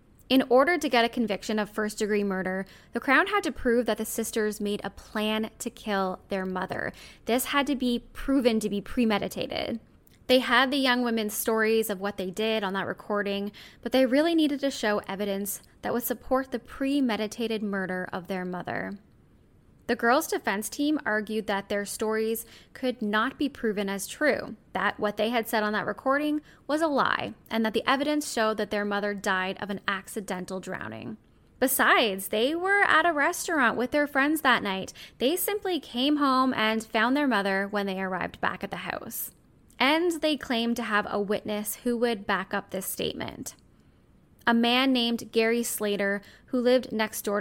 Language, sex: English, female